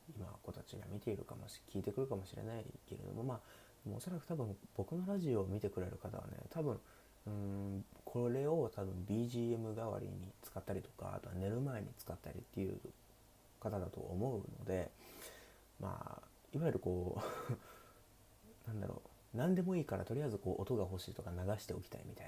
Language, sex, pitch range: Japanese, male, 95-120 Hz